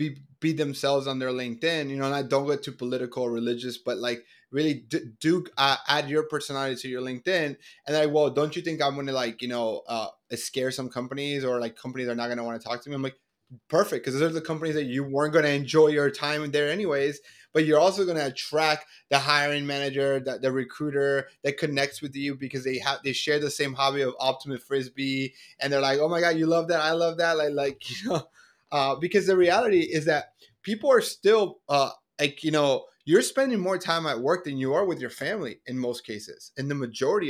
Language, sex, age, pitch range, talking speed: English, male, 20-39, 130-150 Hz, 240 wpm